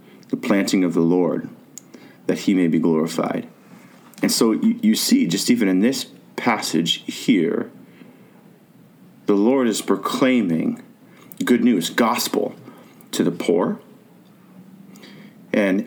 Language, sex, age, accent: English, male, 40-59, American